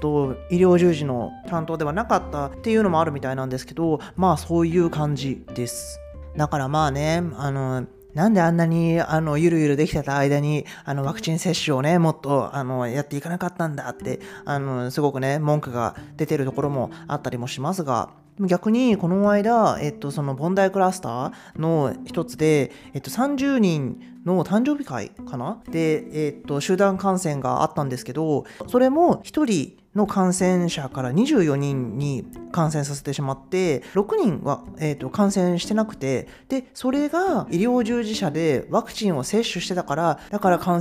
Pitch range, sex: 140-185 Hz, male